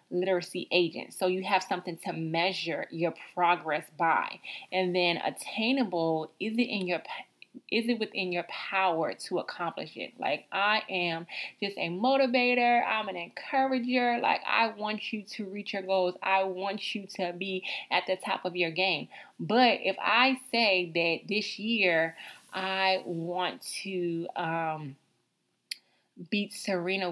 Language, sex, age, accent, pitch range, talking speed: English, female, 20-39, American, 170-205 Hz, 150 wpm